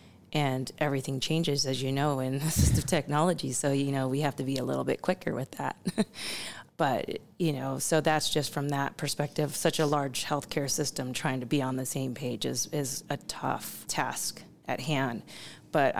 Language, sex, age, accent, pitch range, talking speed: English, female, 30-49, American, 130-150 Hz, 190 wpm